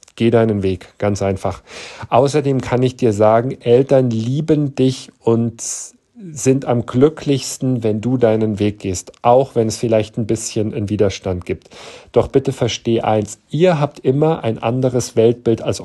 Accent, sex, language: German, male, German